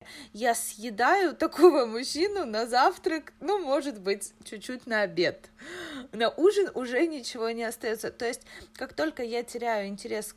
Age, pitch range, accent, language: 30-49, 210-275 Hz, native, Russian